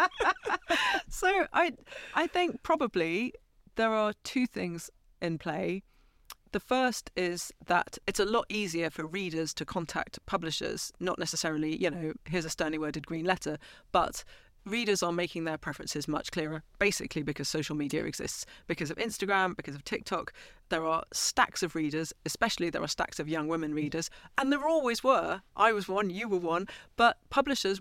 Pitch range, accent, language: 165-215 Hz, British, English